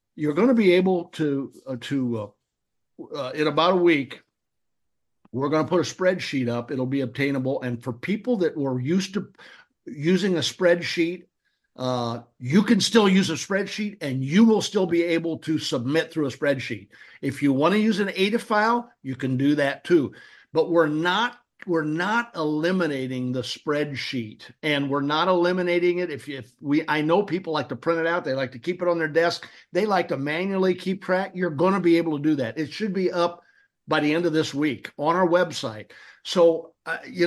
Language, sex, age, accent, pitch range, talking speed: English, male, 60-79, American, 140-190 Hz, 205 wpm